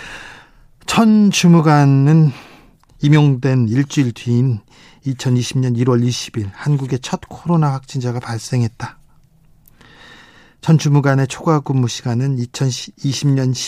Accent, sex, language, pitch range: native, male, Korean, 120-140 Hz